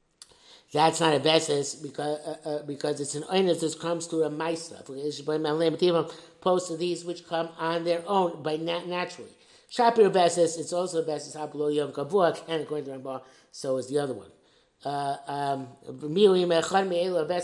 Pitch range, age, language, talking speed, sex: 150-175 Hz, 60-79, English, 150 wpm, male